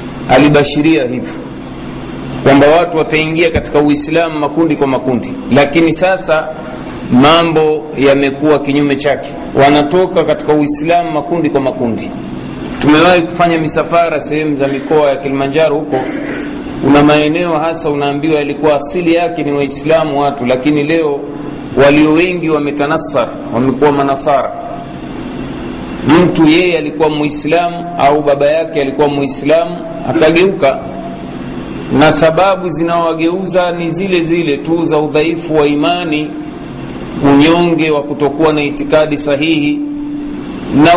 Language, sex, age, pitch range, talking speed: Swahili, male, 40-59, 145-170 Hz, 110 wpm